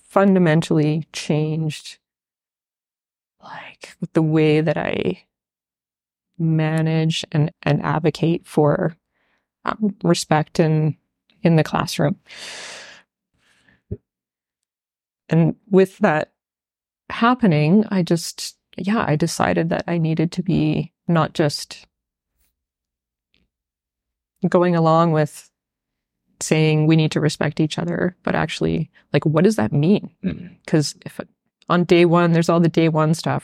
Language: English